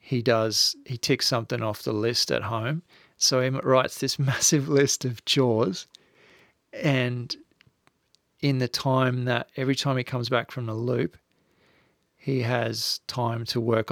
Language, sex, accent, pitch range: English, male, Australian, 115-130 Hz